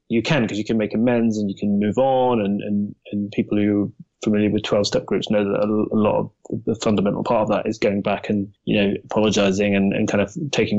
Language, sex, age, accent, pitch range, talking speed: English, male, 20-39, British, 110-140 Hz, 250 wpm